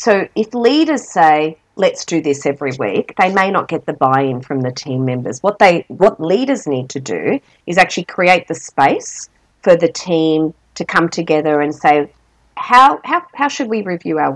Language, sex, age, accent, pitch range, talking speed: English, female, 40-59, Australian, 155-200 Hz, 190 wpm